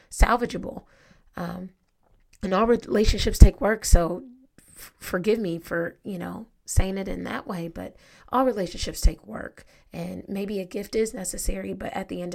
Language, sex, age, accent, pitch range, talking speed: English, female, 30-49, American, 185-220 Hz, 160 wpm